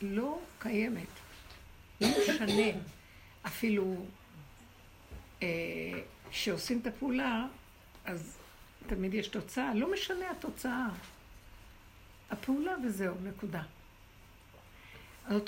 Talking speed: 75 wpm